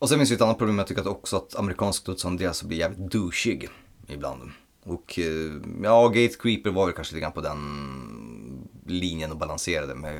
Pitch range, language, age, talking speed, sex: 80-105 Hz, Swedish, 30-49, 200 wpm, male